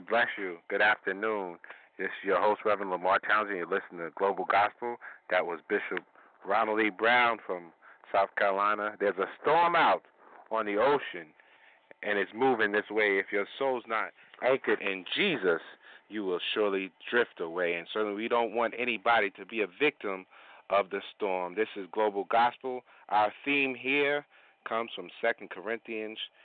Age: 40-59